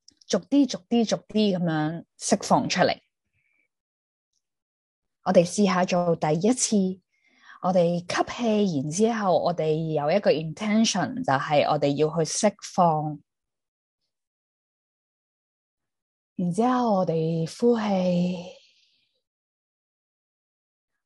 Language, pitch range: Chinese, 155-210 Hz